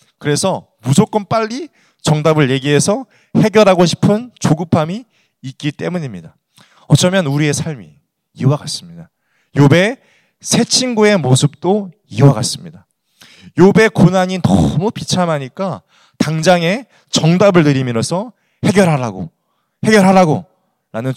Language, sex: Korean, male